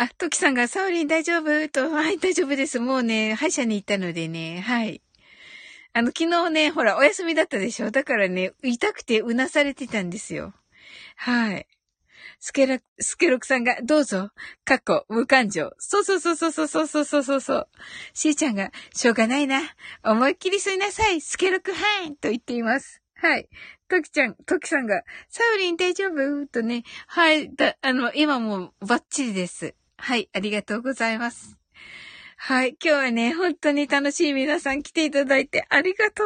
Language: Japanese